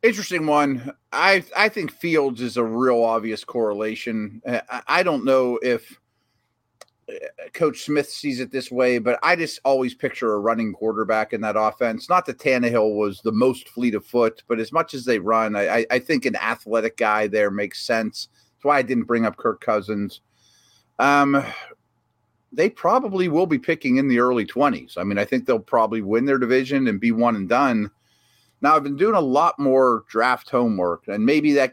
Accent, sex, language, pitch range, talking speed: American, male, English, 110-135 Hz, 190 wpm